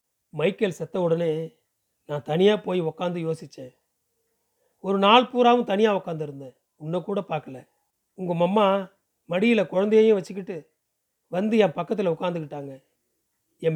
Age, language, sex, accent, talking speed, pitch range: 40-59, Tamil, male, native, 110 wpm, 155-200 Hz